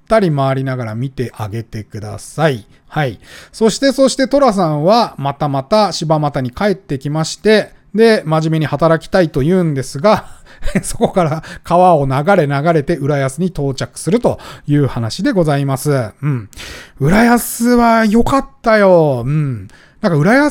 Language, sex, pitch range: Japanese, male, 135-205 Hz